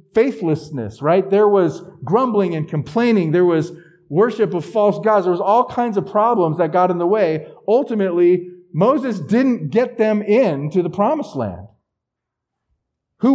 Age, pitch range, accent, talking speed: 50-69, 150-225 Hz, American, 155 wpm